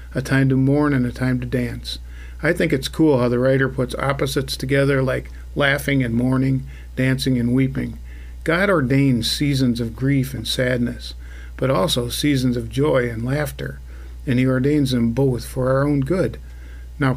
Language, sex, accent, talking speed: English, male, American, 175 wpm